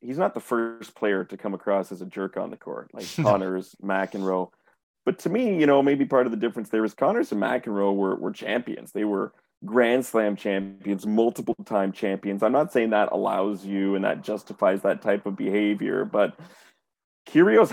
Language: English